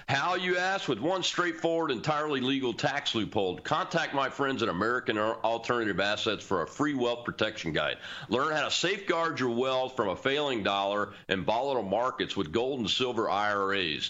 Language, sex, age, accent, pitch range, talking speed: English, male, 40-59, American, 110-155 Hz, 175 wpm